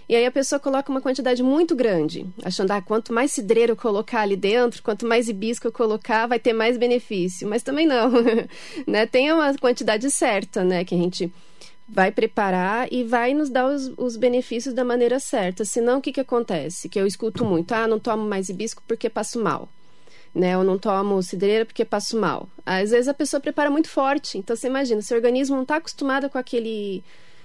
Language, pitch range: Portuguese, 200-260 Hz